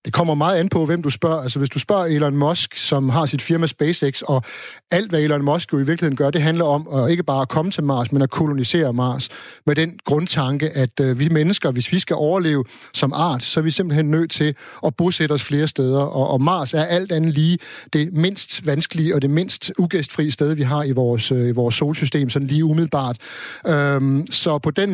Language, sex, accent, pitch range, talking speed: Danish, male, native, 140-170 Hz, 230 wpm